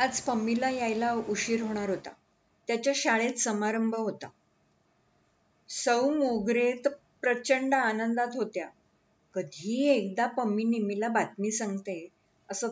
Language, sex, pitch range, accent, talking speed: Marathi, female, 205-265 Hz, native, 110 wpm